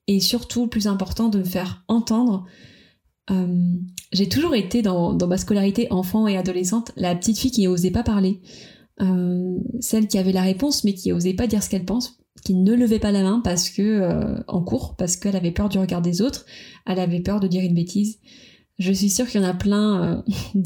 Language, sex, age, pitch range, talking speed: French, female, 20-39, 185-220 Hz, 220 wpm